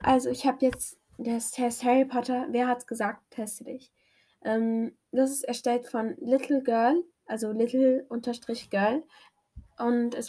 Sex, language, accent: female, German, German